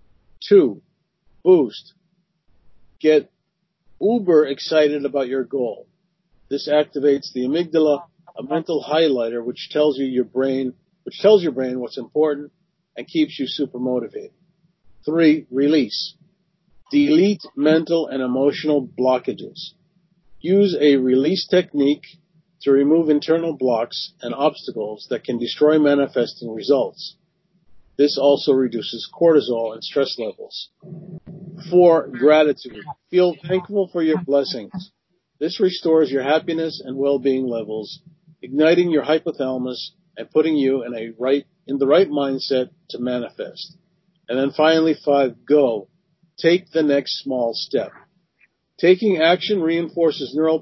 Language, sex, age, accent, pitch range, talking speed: English, male, 50-69, American, 135-175 Hz, 120 wpm